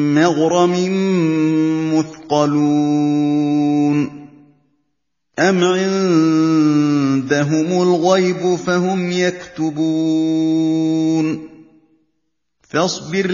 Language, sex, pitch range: Indonesian, male, 155-180 Hz